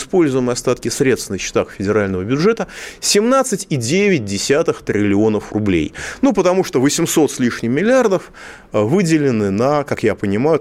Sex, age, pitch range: male, 30-49, 110-180 Hz